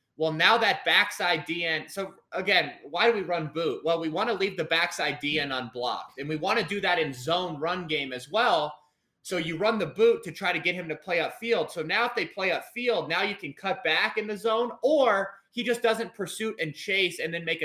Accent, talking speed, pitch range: American, 240 wpm, 155-200 Hz